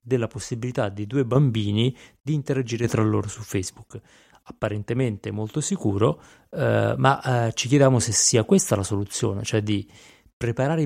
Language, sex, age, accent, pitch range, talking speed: Italian, male, 30-49, native, 105-125 Hz, 150 wpm